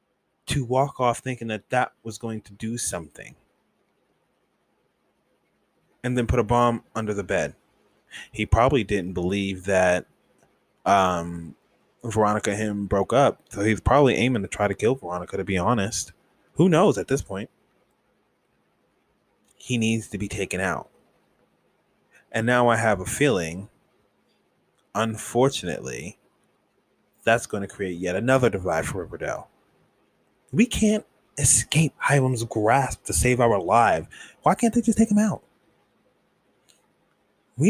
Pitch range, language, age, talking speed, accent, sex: 100-125 Hz, English, 20-39, 135 wpm, American, male